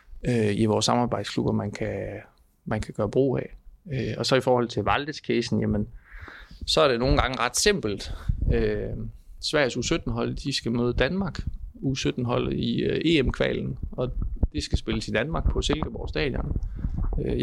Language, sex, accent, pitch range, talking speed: Danish, male, native, 100-125 Hz, 165 wpm